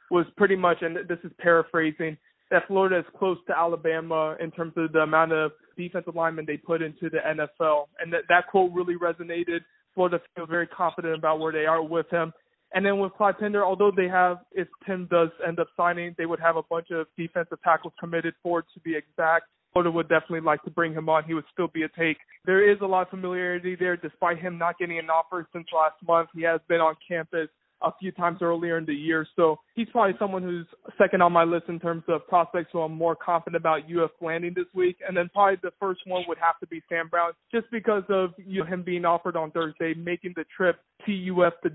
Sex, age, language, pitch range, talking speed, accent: male, 20-39, English, 165-180 Hz, 230 wpm, American